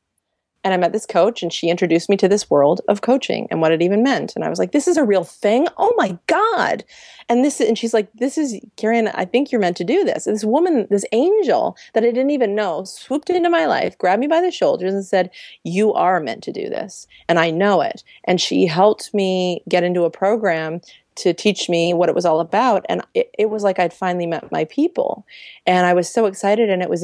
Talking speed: 245 wpm